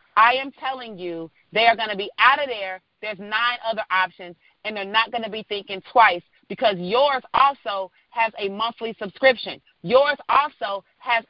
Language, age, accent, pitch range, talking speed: English, 30-49, American, 220-290 Hz, 180 wpm